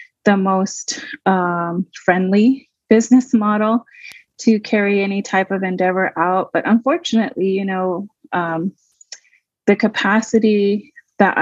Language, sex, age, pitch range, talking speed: English, female, 30-49, 180-210 Hz, 110 wpm